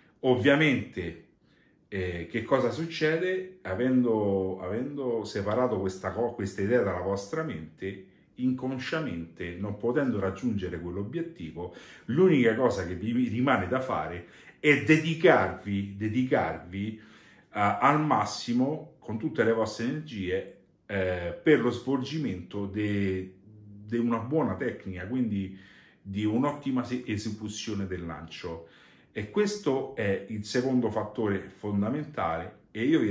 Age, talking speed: 40-59, 110 wpm